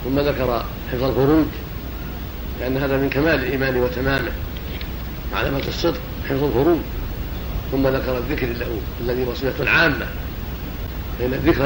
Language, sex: Arabic, male